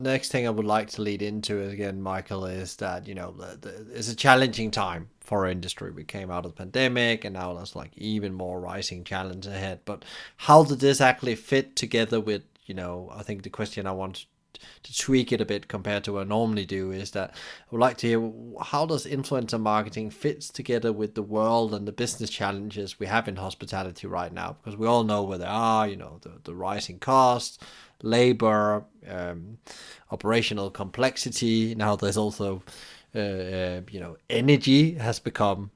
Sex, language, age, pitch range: male, English, 30-49, 95-115 Hz